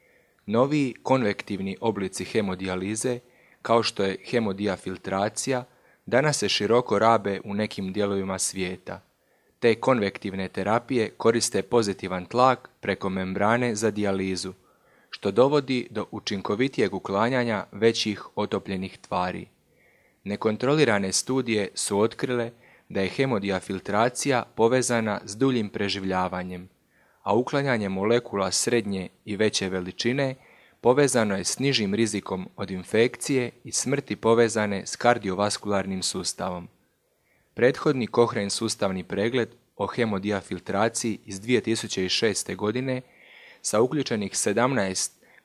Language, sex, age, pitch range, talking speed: Croatian, male, 30-49, 95-120 Hz, 100 wpm